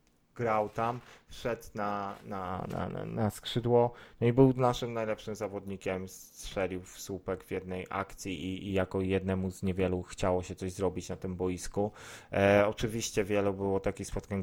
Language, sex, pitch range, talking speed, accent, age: Polish, male, 95-110 Hz, 160 wpm, native, 20-39